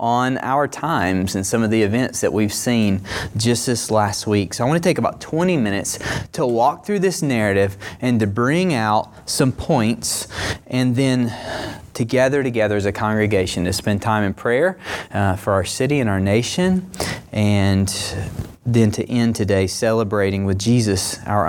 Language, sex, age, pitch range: English, male, 30-49, 105-165 Hz